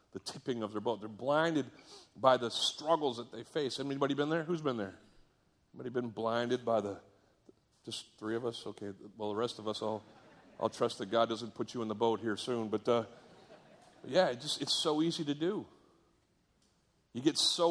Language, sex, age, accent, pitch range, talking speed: English, male, 40-59, American, 110-145 Hz, 195 wpm